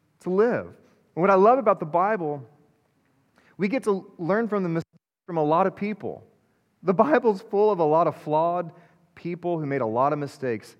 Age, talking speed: 30-49, 200 wpm